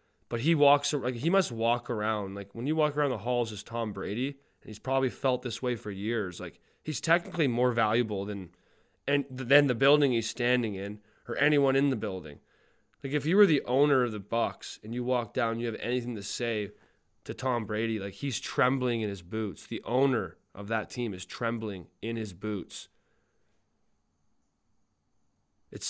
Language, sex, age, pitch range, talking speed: English, male, 20-39, 110-135 Hz, 190 wpm